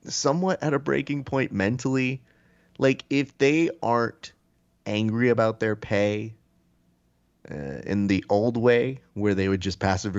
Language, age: English, 30-49